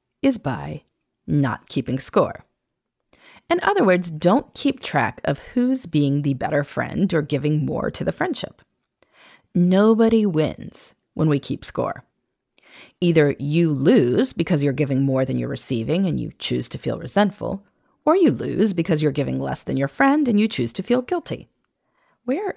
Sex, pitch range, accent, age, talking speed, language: female, 140-225 Hz, American, 30-49, 165 wpm, English